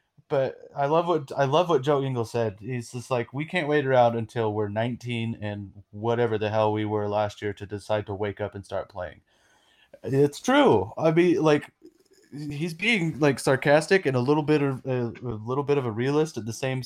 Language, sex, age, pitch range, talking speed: English, male, 20-39, 110-145 Hz, 215 wpm